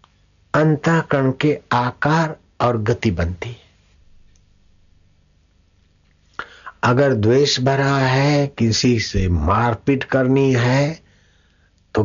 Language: Hindi